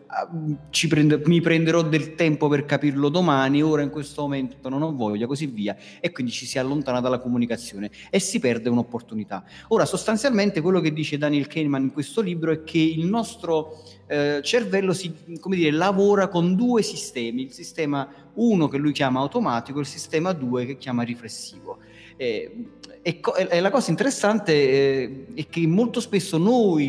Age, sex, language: 30-49, male, Italian